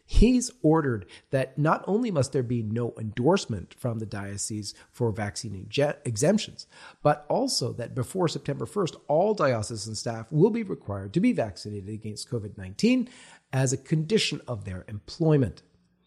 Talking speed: 145 wpm